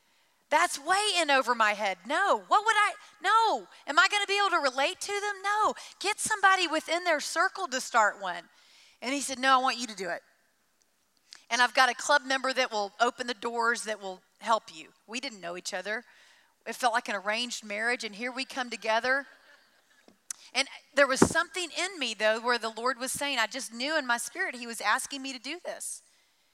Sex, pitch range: female, 225-295 Hz